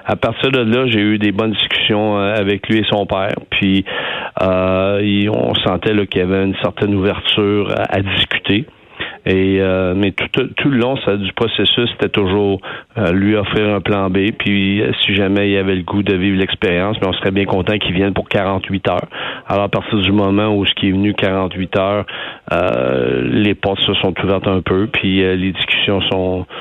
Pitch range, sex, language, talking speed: 95-105 Hz, male, French, 205 wpm